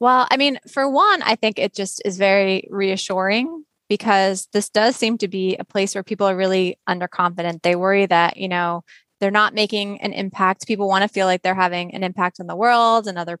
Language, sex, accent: English, female, American